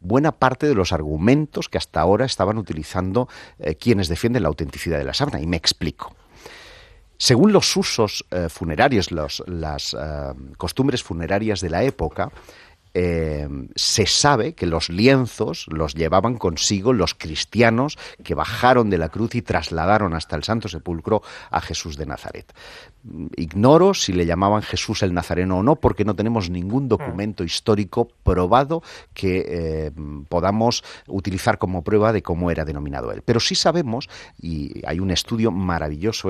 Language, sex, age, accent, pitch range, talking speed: English, male, 40-59, Spanish, 80-115 Hz, 155 wpm